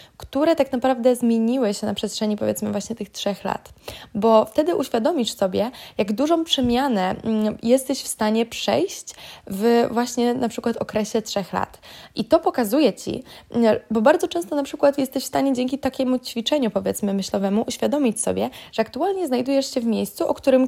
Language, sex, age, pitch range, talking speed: Polish, female, 20-39, 225-275 Hz, 165 wpm